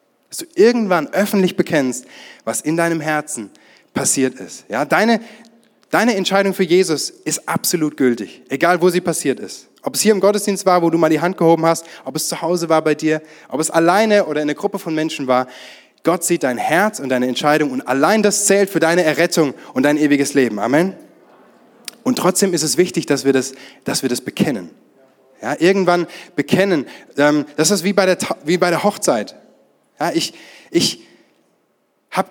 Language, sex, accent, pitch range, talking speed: German, male, German, 150-200 Hz, 190 wpm